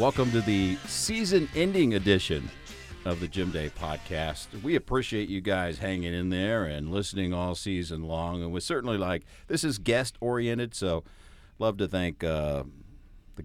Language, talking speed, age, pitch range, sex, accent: English, 155 wpm, 50-69, 85-115 Hz, male, American